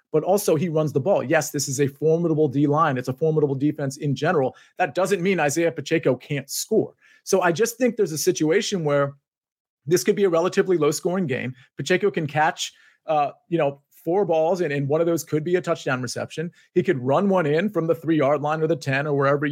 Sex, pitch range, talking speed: male, 145-185 Hz, 220 wpm